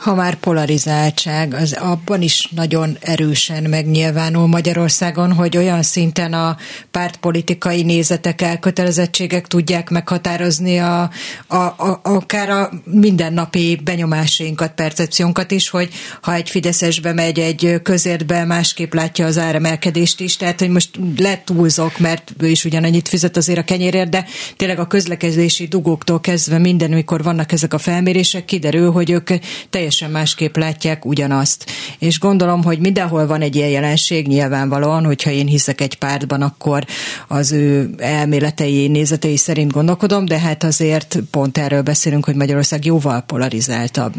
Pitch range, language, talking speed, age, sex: 155-175 Hz, Hungarian, 140 wpm, 30-49, female